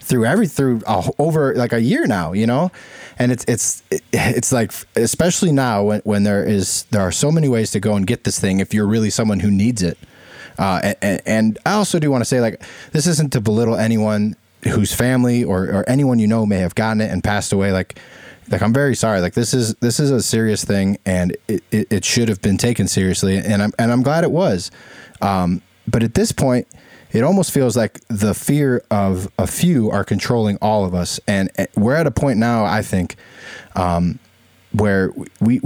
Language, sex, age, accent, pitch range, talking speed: English, male, 20-39, American, 100-125 Hz, 210 wpm